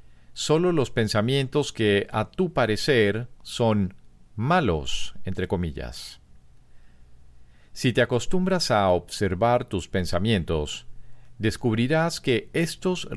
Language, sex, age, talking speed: Spanish, male, 50-69, 95 wpm